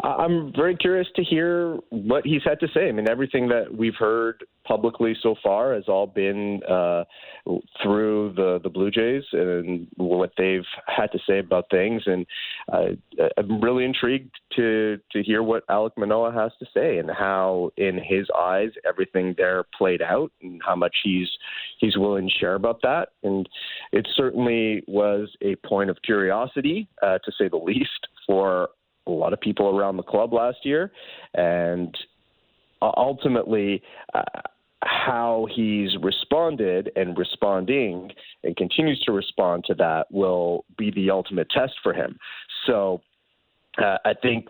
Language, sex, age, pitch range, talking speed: English, male, 30-49, 95-115 Hz, 160 wpm